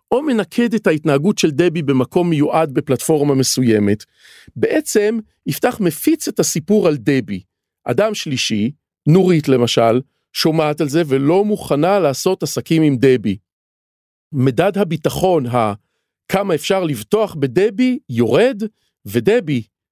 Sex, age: male, 40-59